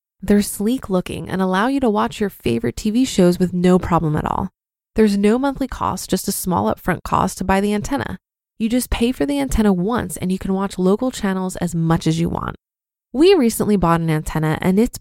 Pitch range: 175-235 Hz